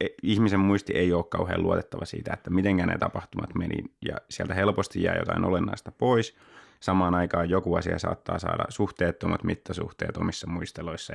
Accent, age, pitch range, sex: native, 20-39, 85-100 Hz, male